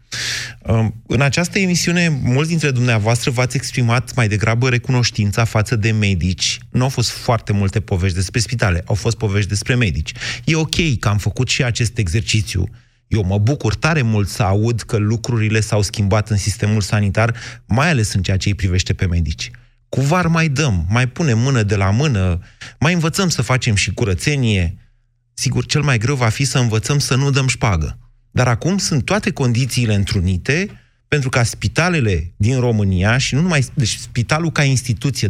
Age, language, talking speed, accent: 30-49, Romanian, 175 wpm, native